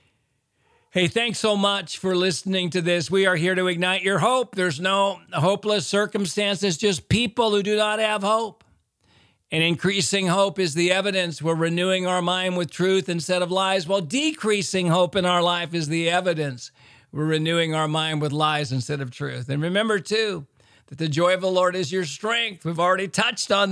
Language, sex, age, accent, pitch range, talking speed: English, male, 50-69, American, 145-195 Hz, 190 wpm